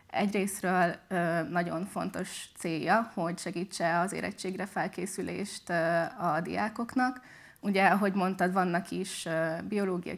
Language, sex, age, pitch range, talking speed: Hungarian, female, 20-39, 175-195 Hz, 100 wpm